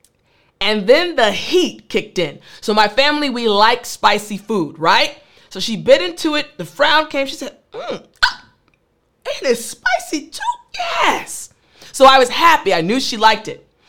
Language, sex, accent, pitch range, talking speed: English, female, American, 200-295 Hz, 175 wpm